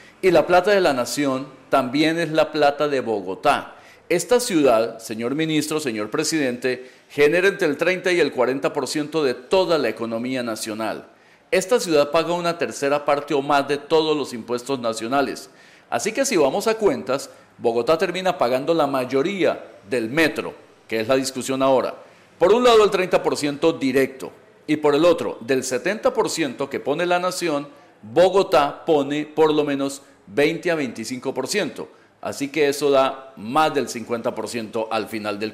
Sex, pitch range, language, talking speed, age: male, 130-170 Hz, Spanish, 160 wpm, 40-59